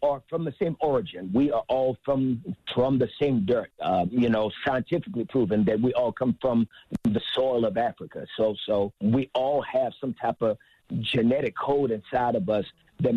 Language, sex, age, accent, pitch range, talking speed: English, male, 50-69, American, 120-170 Hz, 185 wpm